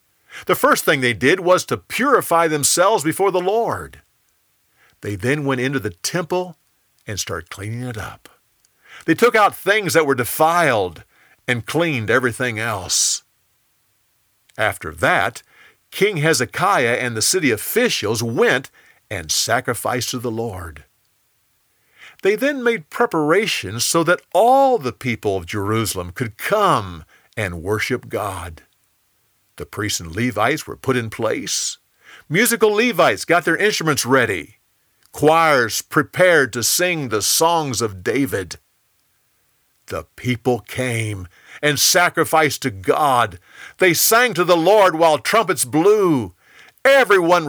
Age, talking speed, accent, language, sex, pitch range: 50-69, 130 wpm, American, English, male, 120-180 Hz